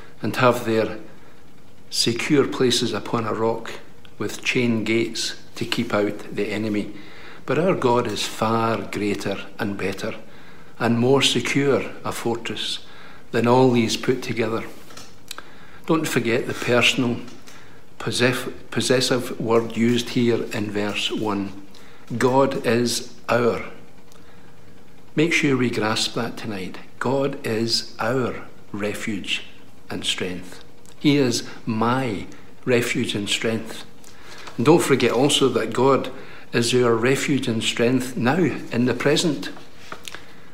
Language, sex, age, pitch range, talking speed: English, male, 60-79, 110-130 Hz, 120 wpm